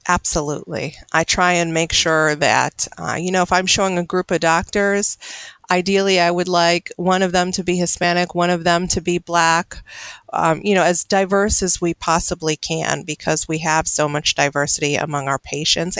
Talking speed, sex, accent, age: 190 wpm, female, American, 40-59